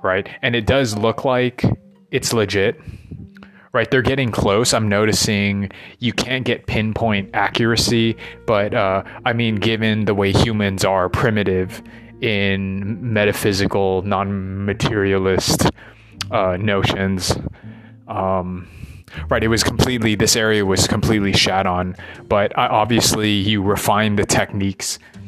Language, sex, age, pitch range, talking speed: English, male, 20-39, 95-115 Hz, 125 wpm